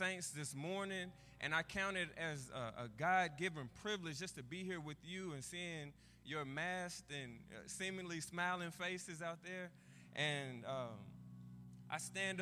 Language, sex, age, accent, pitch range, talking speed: English, male, 20-39, American, 125-175 Hz, 155 wpm